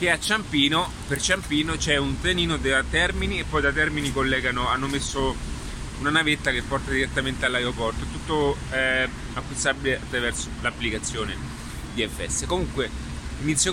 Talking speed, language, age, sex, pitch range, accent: 130 wpm, Italian, 20-39, male, 110-145 Hz, native